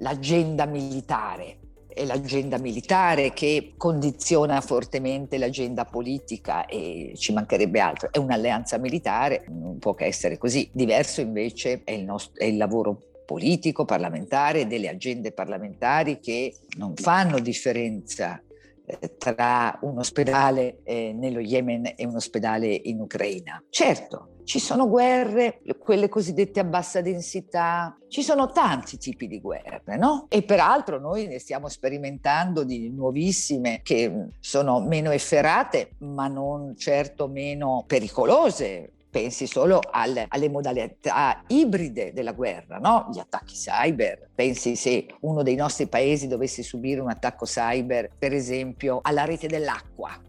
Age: 50-69